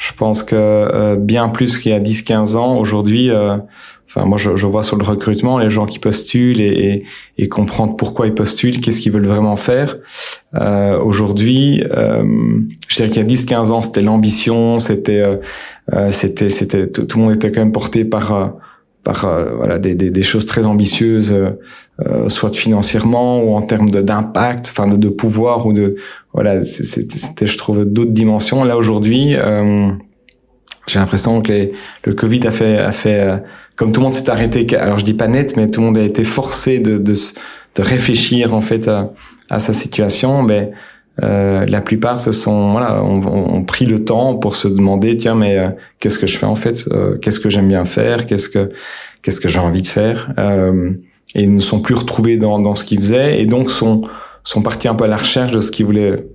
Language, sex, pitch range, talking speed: French, male, 100-115 Hz, 215 wpm